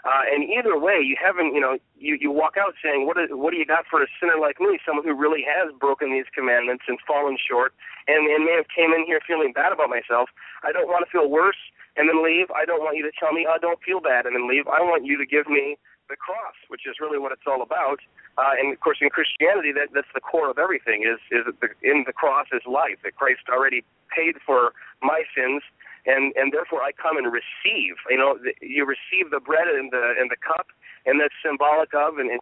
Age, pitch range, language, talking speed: 40-59, 135-165 Hz, English, 255 wpm